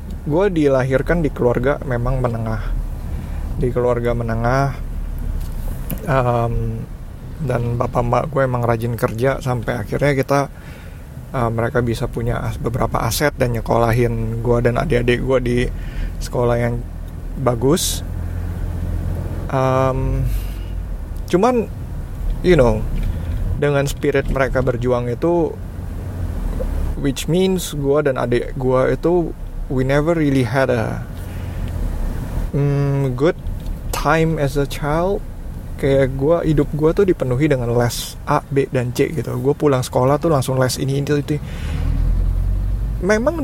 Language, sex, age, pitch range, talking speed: Indonesian, male, 20-39, 110-140 Hz, 120 wpm